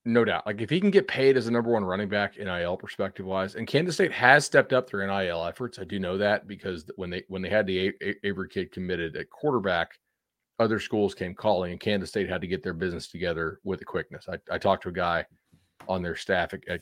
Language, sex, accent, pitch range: English, male, American, 95-130 Hz